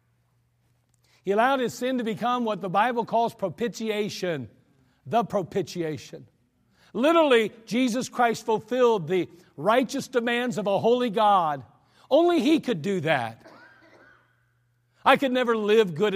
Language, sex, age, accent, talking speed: English, male, 50-69, American, 125 wpm